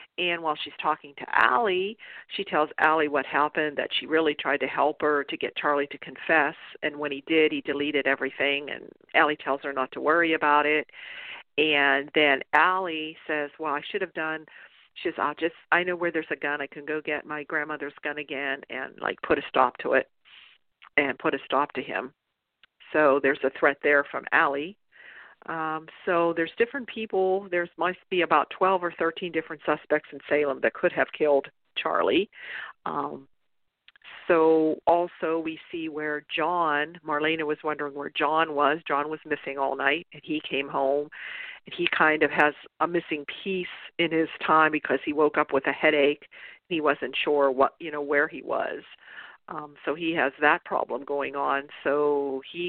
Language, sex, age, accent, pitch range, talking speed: English, female, 50-69, American, 145-165 Hz, 190 wpm